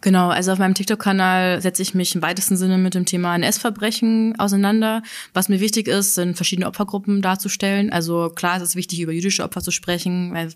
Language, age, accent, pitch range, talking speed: German, 20-39, German, 170-190 Hz, 200 wpm